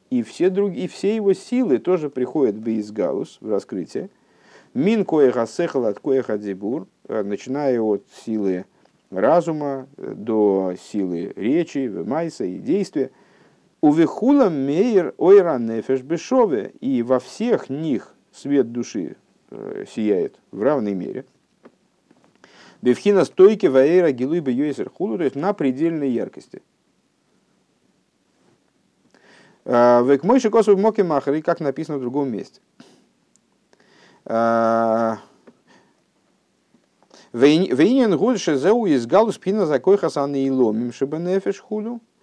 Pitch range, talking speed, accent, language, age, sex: 120-190 Hz, 100 wpm, native, Russian, 50-69, male